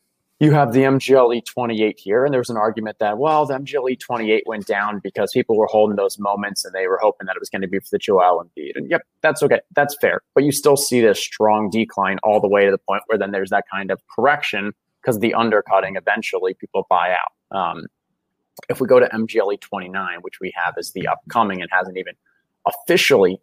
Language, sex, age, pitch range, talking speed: English, male, 20-39, 100-130 Hz, 225 wpm